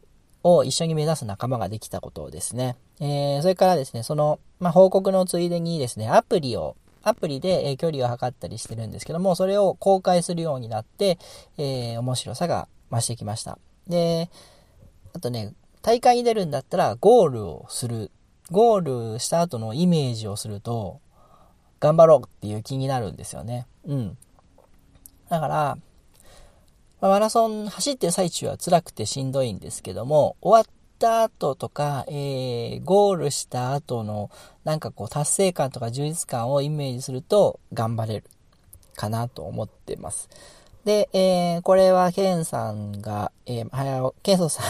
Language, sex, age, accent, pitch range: Japanese, male, 40-59, native, 115-175 Hz